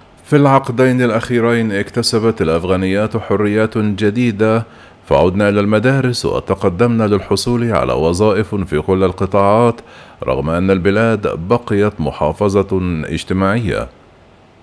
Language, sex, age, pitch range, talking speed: Arabic, male, 40-59, 95-115 Hz, 95 wpm